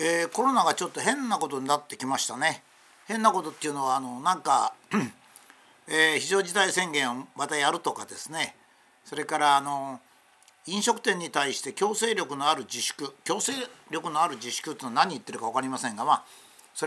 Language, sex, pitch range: Japanese, male, 145-215 Hz